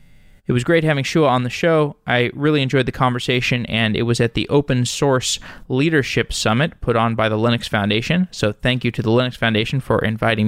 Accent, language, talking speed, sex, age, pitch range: American, English, 210 wpm, male, 20-39, 115-140 Hz